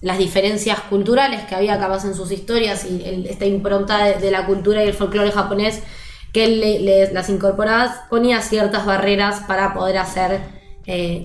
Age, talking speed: 20-39, 170 wpm